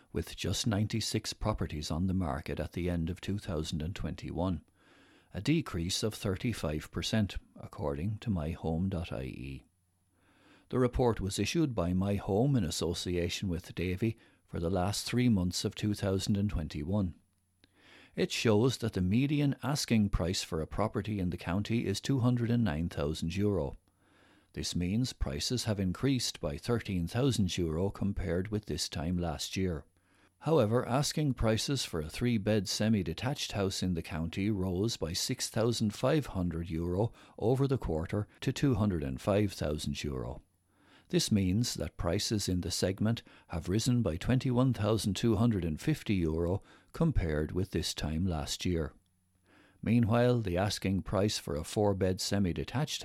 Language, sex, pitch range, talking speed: English, male, 85-110 Hz, 125 wpm